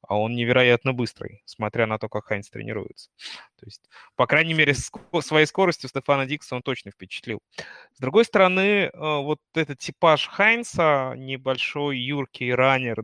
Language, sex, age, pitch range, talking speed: Russian, male, 20-39, 115-135 Hz, 145 wpm